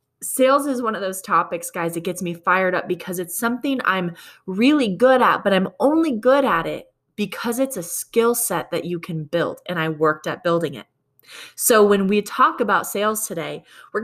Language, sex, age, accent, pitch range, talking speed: English, female, 20-39, American, 170-235 Hz, 205 wpm